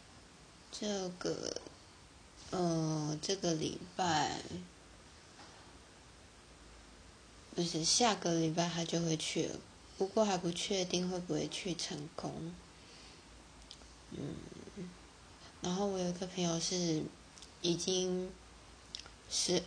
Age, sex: 20-39, female